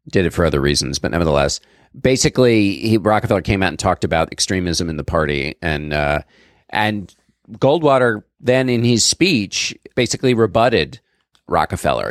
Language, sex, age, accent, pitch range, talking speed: English, male, 40-59, American, 85-110 Hz, 150 wpm